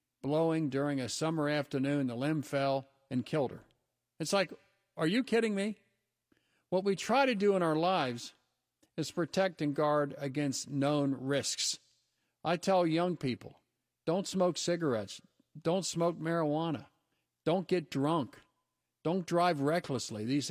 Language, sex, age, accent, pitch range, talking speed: English, male, 50-69, American, 135-165 Hz, 145 wpm